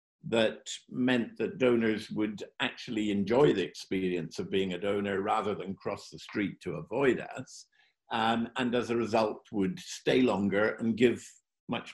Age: 50-69